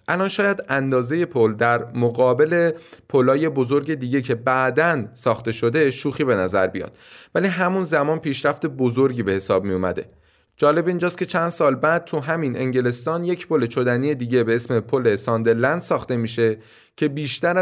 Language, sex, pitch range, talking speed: Persian, male, 115-160 Hz, 160 wpm